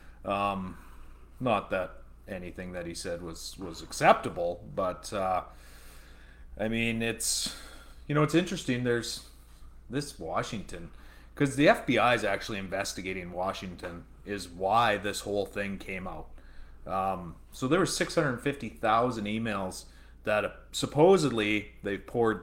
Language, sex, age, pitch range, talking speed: English, male, 30-49, 85-115 Hz, 125 wpm